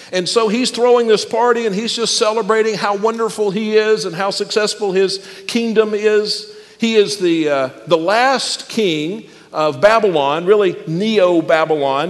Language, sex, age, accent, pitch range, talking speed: English, male, 50-69, American, 185-225 Hz, 155 wpm